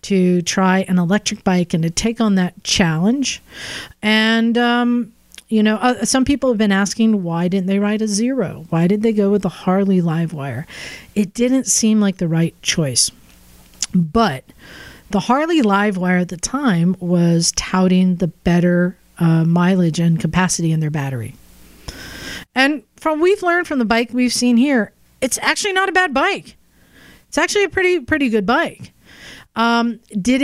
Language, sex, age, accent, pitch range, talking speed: English, female, 40-59, American, 185-240 Hz, 170 wpm